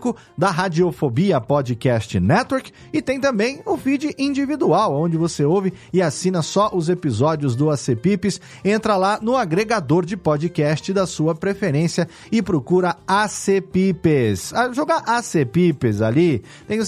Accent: Brazilian